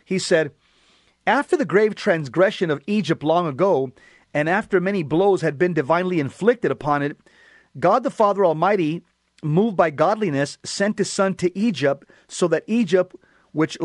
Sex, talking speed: male, 155 wpm